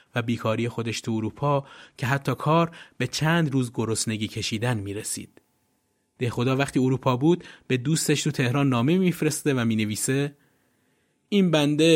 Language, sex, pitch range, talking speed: Persian, male, 120-160 Hz, 155 wpm